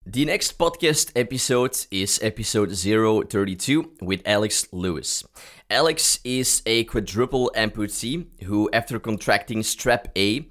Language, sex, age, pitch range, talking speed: English, male, 30-49, 95-125 Hz, 115 wpm